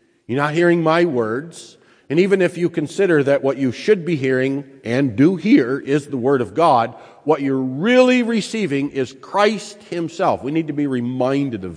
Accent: American